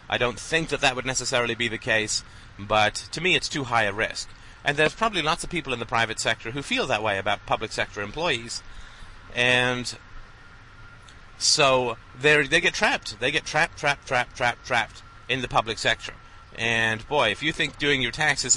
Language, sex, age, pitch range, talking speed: English, male, 30-49, 100-125 Hz, 195 wpm